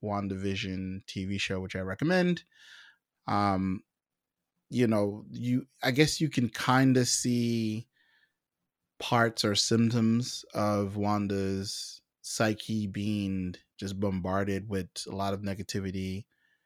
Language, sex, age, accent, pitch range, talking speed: English, male, 20-39, American, 95-115 Hz, 110 wpm